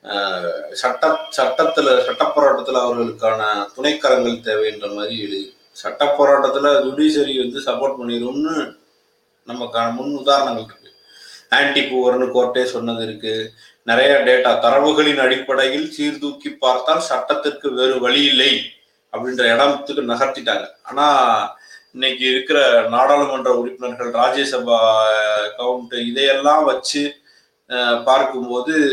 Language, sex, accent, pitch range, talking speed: Tamil, male, native, 125-145 Hz, 100 wpm